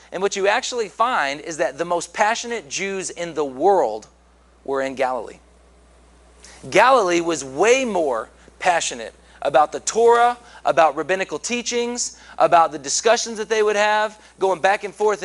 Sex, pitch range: male, 130-210 Hz